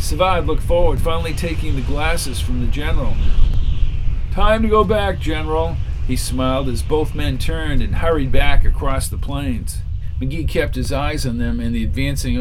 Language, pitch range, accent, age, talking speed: English, 90-130 Hz, American, 50-69, 175 wpm